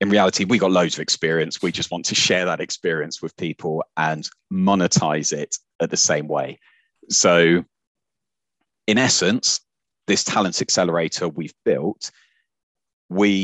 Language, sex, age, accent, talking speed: English, male, 30-49, British, 145 wpm